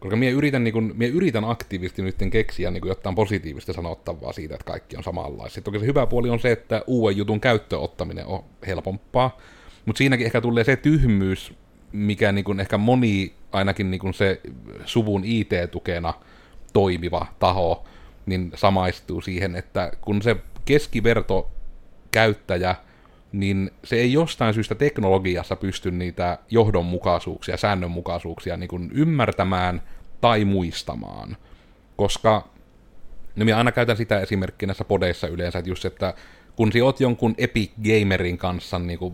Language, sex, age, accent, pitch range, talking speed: Finnish, male, 30-49, native, 90-110 Hz, 140 wpm